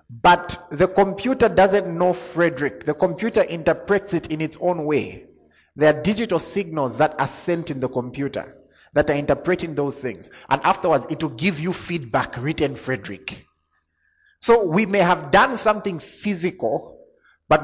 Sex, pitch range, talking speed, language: male, 125-180 Hz, 155 wpm, English